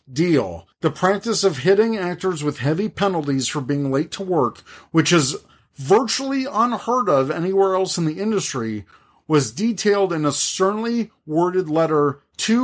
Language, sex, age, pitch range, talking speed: English, male, 40-59, 135-185 Hz, 150 wpm